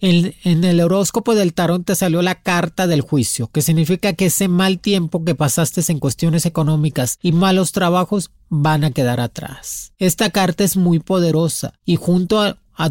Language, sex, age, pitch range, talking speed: Spanish, male, 30-49, 155-190 Hz, 180 wpm